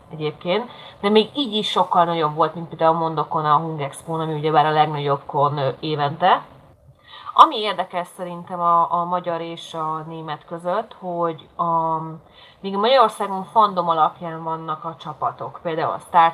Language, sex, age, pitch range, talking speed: Hungarian, female, 30-49, 150-185 Hz, 155 wpm